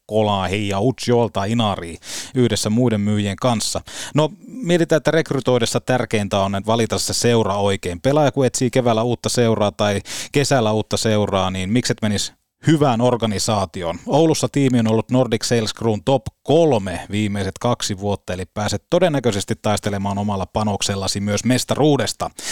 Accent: native